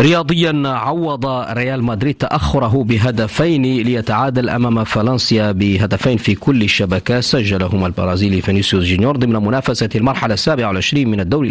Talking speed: 125 wpm